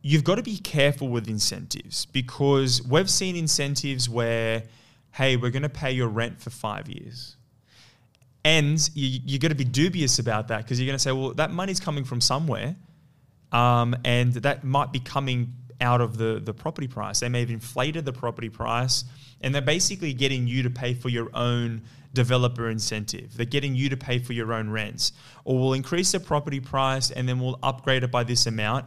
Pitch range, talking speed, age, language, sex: 120-140 Hz, 200 wpm, 10-29, English, male